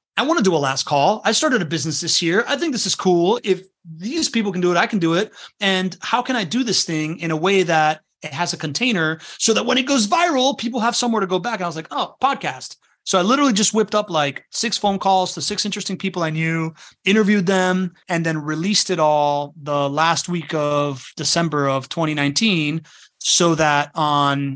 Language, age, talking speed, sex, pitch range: English, 30-49, 225 wpm, male, 145-185 Hz